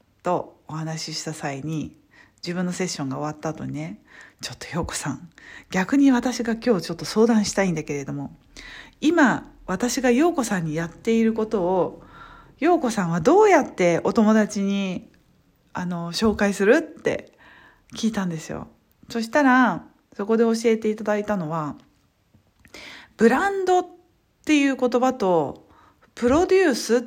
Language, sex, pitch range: Japanese, female, 180-255 Hz